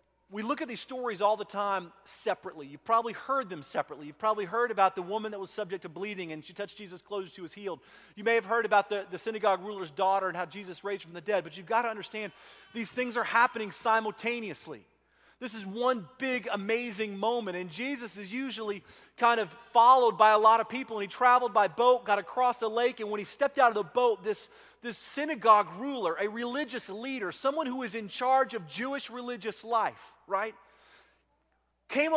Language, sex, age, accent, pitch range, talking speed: English, male, 30-49, American, 195-245 Hz, 215 wpm